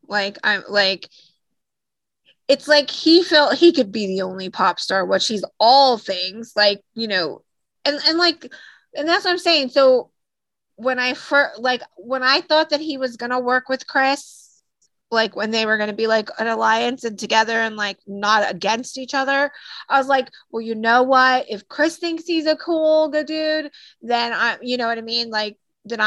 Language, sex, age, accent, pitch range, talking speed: English, female, 20-39, American, 210-270 Hz, 195 wpm